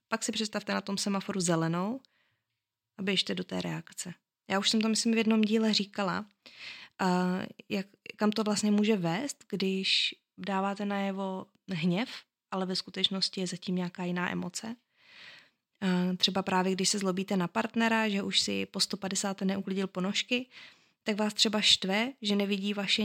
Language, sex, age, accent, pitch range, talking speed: Czech, female, 20-39, native, 190-225 Hz, 160 wpm